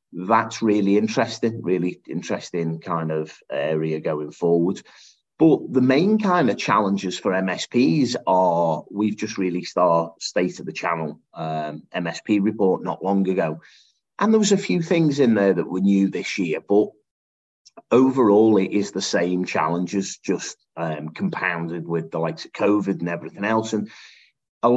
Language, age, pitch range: English, 30-49, 85-110 Hz